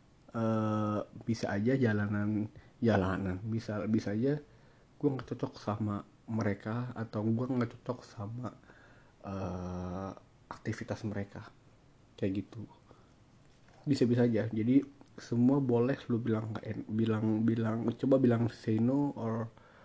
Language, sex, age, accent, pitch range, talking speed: Indonesian, male, 30-49, native, 105-130 Hz, 110 wpm